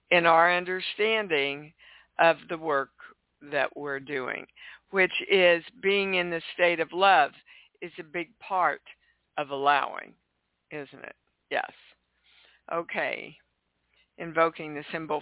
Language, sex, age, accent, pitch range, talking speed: English, female, 60-79, American, 150-185 Hz, 120 wpm